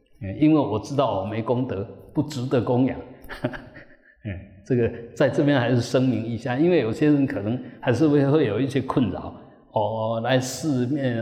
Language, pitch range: Chinese, 115-140 Hz